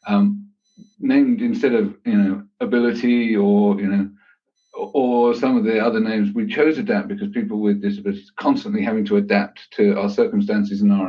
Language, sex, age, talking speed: English, male, 50-69, 175 wpm